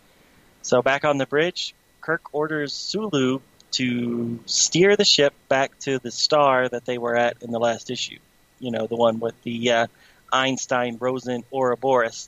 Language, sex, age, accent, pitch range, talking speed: English, male, 30-49, American, 125-145 Hz, 155 wpm